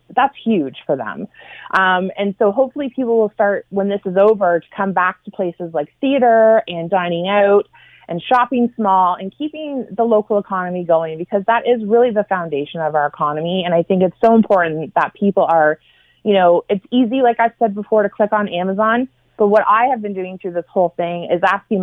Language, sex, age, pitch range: English, female, 30-49, 175-220 Hz